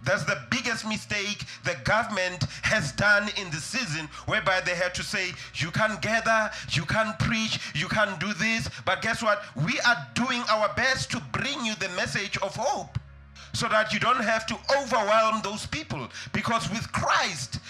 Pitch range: 185-240 Hz